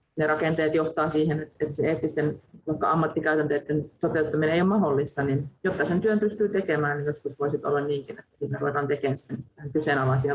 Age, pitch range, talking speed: 30-49, 140-165 Hz, 160 wpm